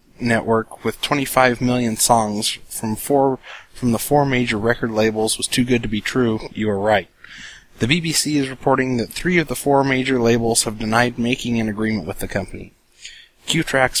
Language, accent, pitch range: English, American, 115-135 Hz